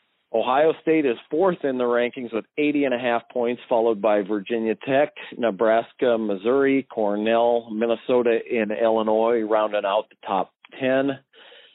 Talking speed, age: 145 wpm, 40-59